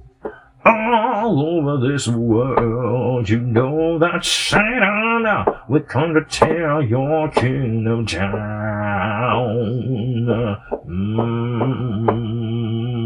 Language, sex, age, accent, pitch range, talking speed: English, male, 50-69, American, 115-160 Hz, 70 wpm